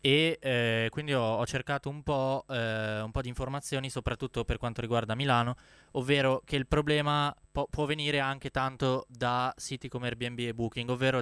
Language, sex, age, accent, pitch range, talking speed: Italian, male, 20-39, native, 120-135 Hz, 180 wpm